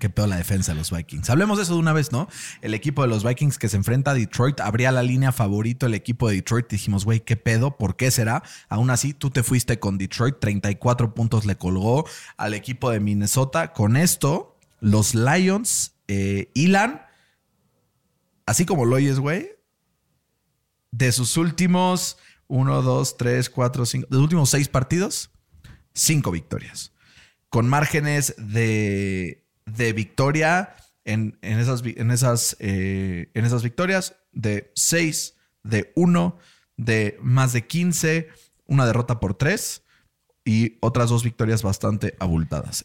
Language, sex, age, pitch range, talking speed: Spanish, male, 30-49, 110-145 Hz, 155 wpm